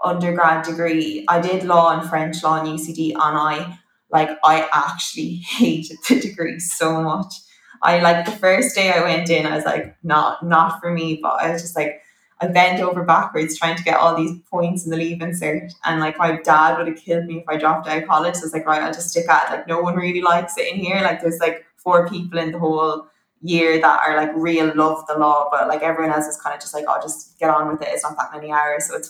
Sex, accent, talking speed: female, Irish, 250 wpm